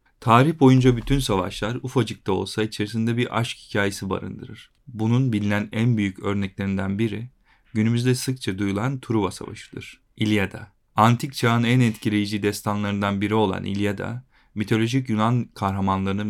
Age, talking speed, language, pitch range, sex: 40-59, 130 wpm, Turkish, 100-120 Hz, male